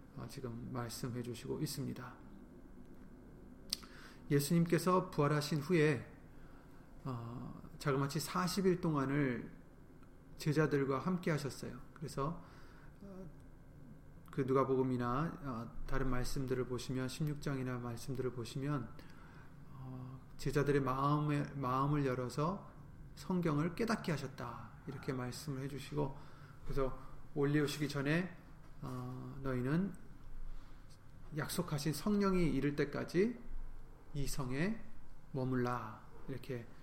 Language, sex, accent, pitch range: Korean, male, native, 130-150 Hz